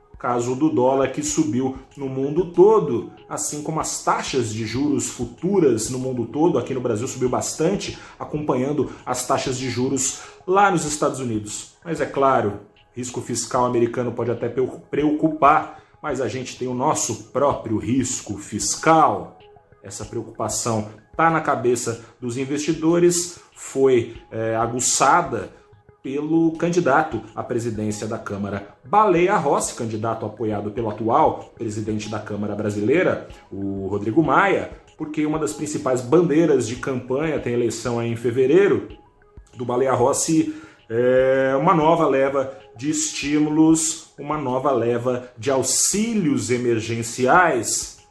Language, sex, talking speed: Portuguese, male, 130 wpm